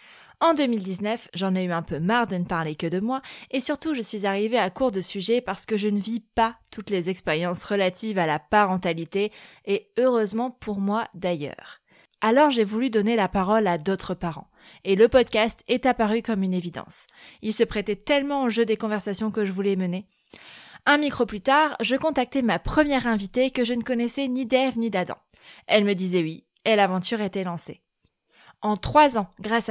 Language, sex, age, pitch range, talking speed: French, female, 20-39, 195-235 Hz, 200 wpm